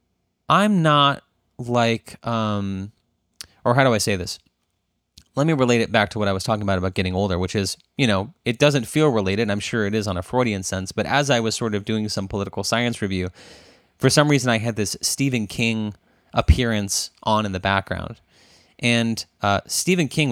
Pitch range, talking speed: 95-115 Hz, 200 wpm